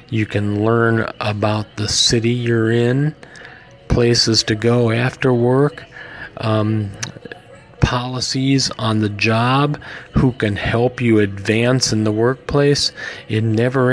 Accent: American